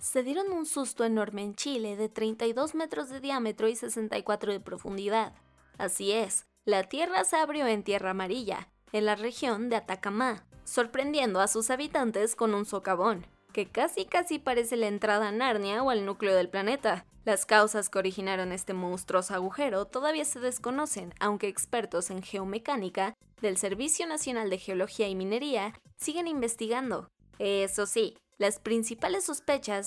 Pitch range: 200-255 Hz